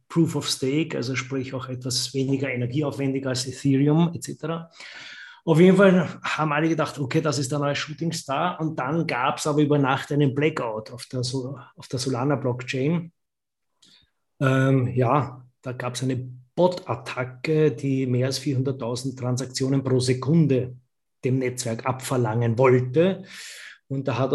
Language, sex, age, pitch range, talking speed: German, male, 20-39, 125-150 Hz, 150 wpm